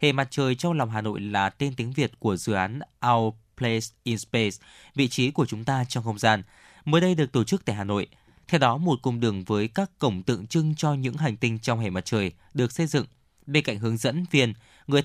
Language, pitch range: Vietnamese, 110-145 Hz